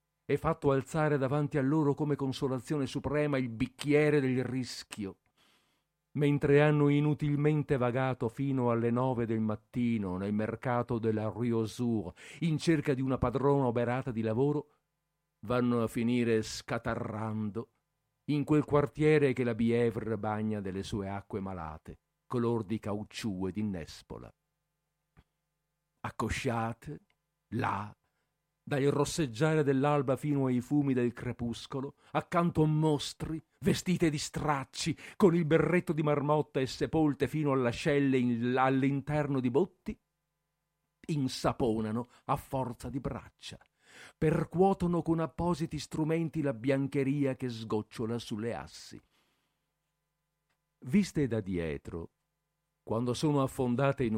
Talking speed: 115 wpm